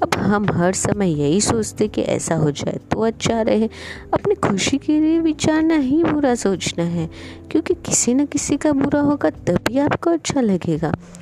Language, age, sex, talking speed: Hindi, 20-39, female, 175 wpm